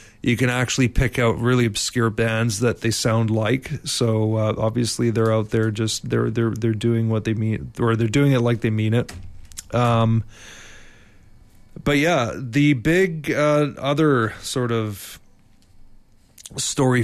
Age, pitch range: 30-49, 110-125 Hz